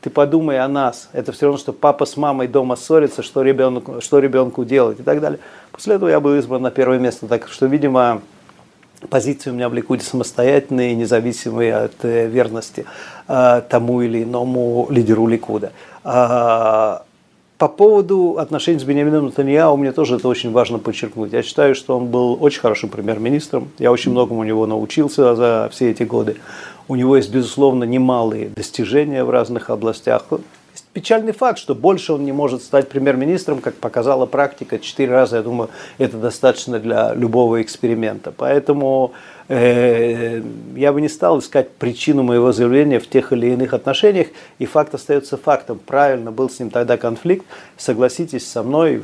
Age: 40-59